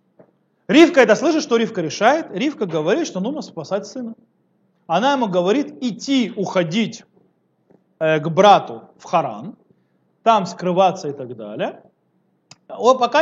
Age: 30-49